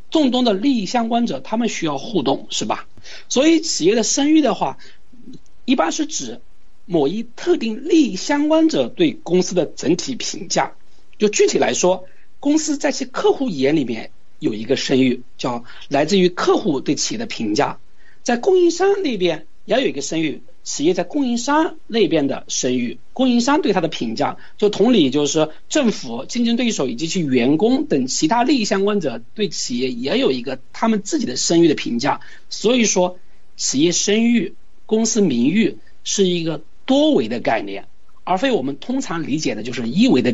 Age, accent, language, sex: 60-79, native, Chinese, male